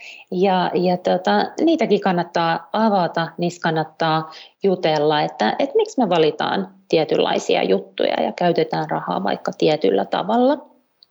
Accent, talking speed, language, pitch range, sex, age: native, 120 wpm, Finnish, 165-215 Hz, female, 30-49